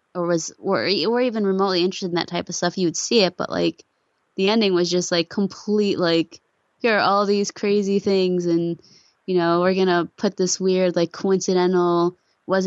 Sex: female